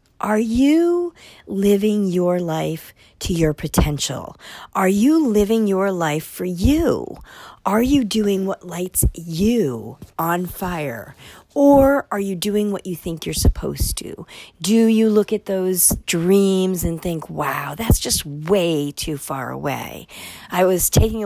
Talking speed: 145 wpm